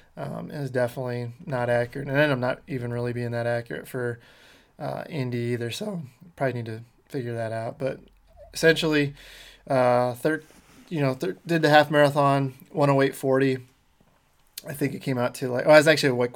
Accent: American